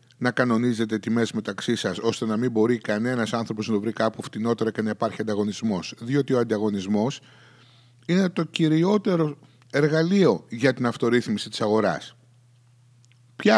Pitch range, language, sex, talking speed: 115-150 Hz, Greek, male, 145 wpm